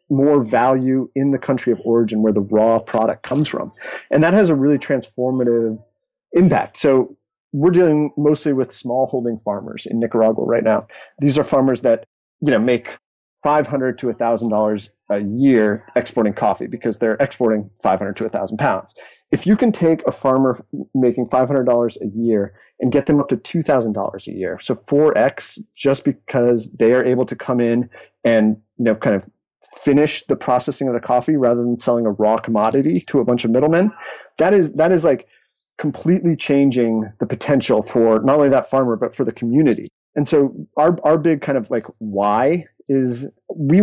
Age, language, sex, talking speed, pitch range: 30-49, English, male, 180 wpm, 115-150 Hz